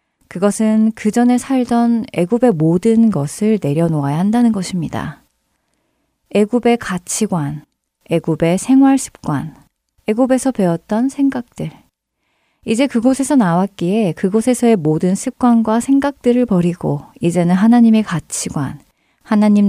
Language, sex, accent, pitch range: Korean, female, native, 170-230 Hz